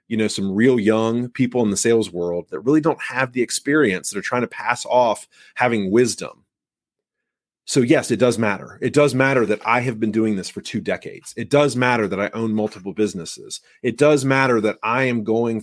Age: 30-49